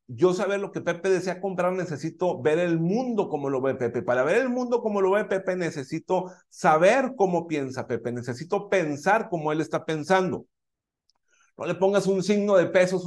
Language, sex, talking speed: Spanish, male, 190 wpm